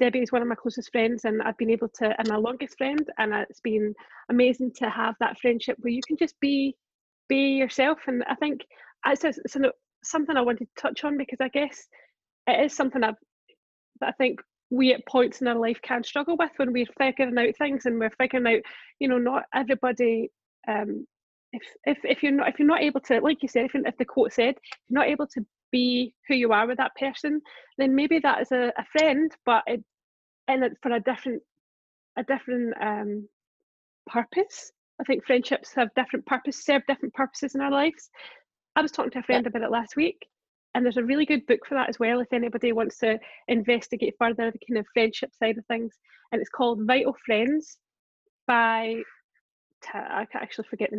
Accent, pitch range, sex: British, 235-275 Hz, female